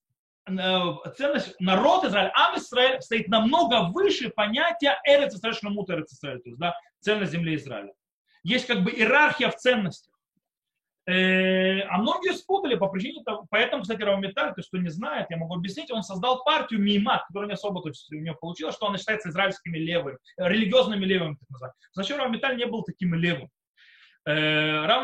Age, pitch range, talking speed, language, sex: 20-39, 180-245 Hz, 145 wpm, Russian, male